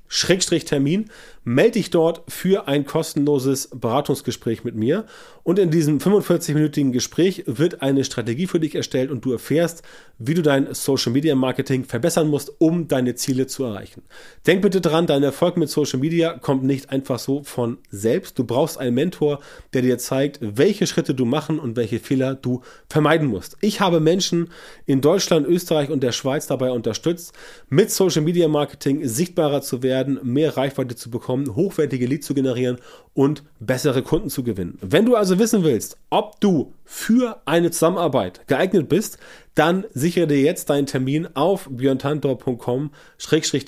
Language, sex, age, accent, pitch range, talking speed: German, male, 30-49, German, 130-165 Hz, 165 wpm